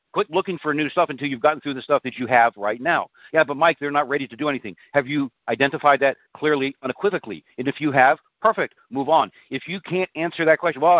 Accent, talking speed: American, 245 wpm